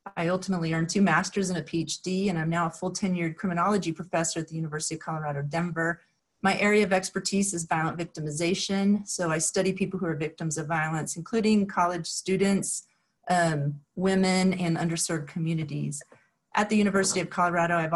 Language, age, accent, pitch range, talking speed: English, 30-49, American, 165-195 Hz, 175 wpm